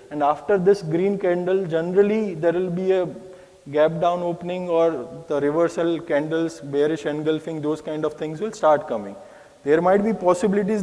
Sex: male